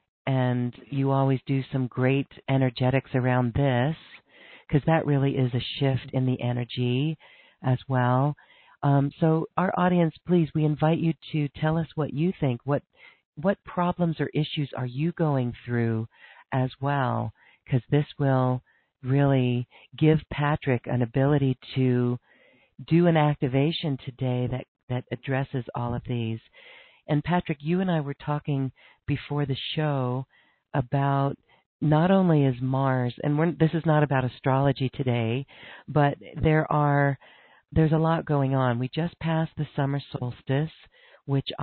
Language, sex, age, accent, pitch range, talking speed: English, female, 50-69, American, 125-150 Hz, 145 wpm